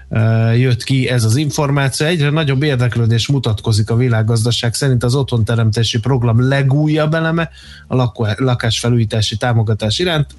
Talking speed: 120 wpm